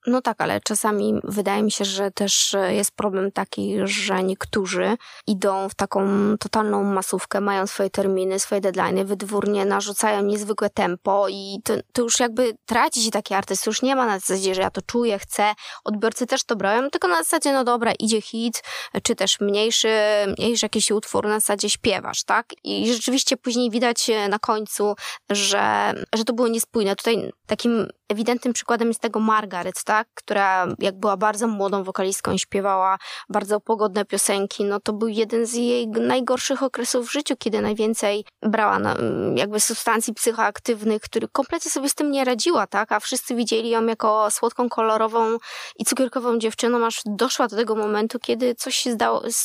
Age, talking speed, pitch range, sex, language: 20-39, 170 wpm, 205-240 Hz, female, Polish